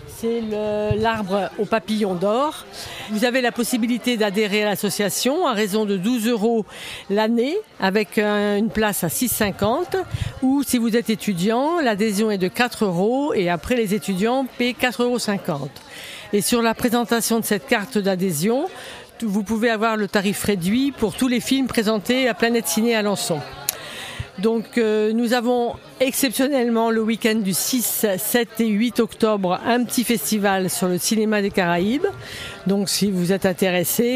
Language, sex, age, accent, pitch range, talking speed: French, female, 50-69, French, 195-235 Hz, 160 wpm